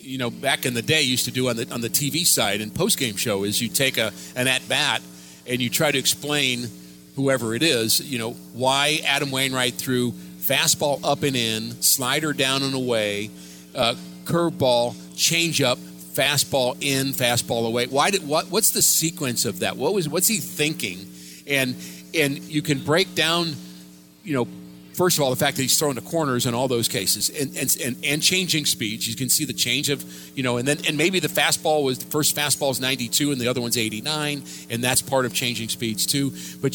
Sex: male